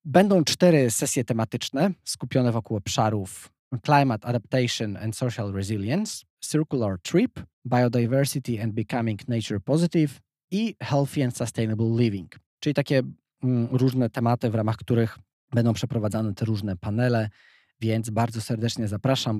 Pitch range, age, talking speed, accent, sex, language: 115-135 Hz, 20-39, 125 wpm, native, male, Polish